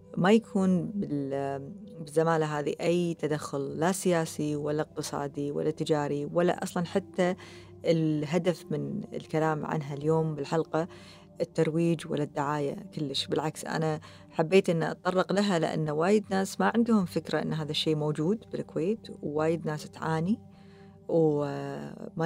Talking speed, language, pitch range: 125 wpm, Arabic, 150-185 Hz